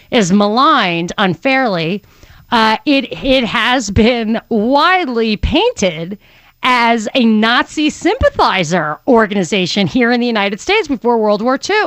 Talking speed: 120 wpm